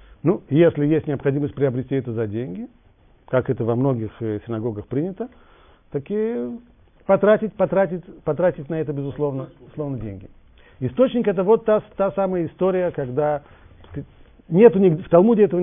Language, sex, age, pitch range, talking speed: Russian, male, 40-59, 110-160 Hz, 145 wpm